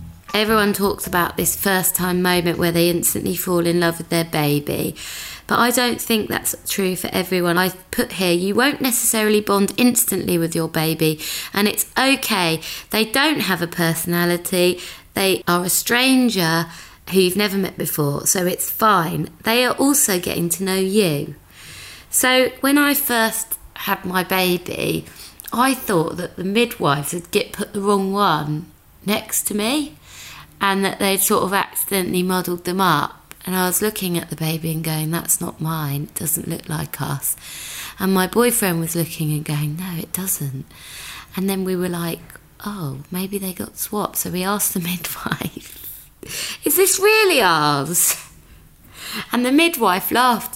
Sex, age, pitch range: female, 20-39, 165-215 Hz